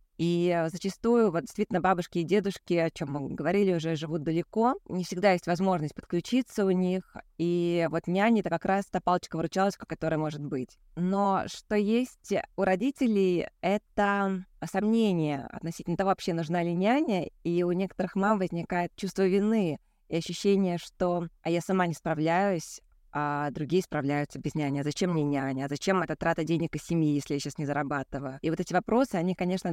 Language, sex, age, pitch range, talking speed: Russian, female, 20-39, 165-200 Hz, 175 wpm